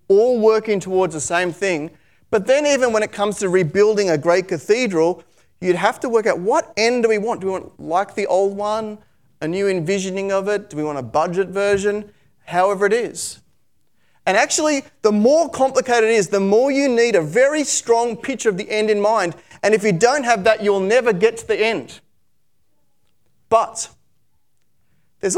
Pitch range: 170-225 Hz